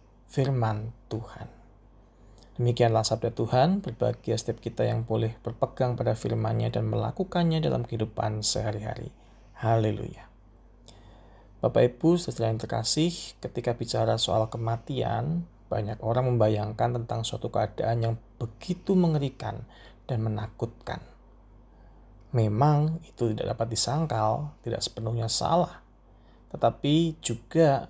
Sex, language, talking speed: male, Indonesian, 105 wpm